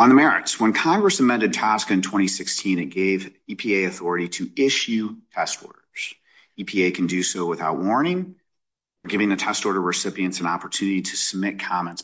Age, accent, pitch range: 40-59, American, 90-115 Hz